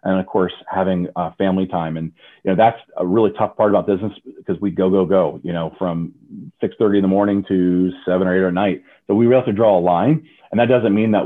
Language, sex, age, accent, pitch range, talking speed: English, male, 30-49, American, 90-110 Hz, 265 wpm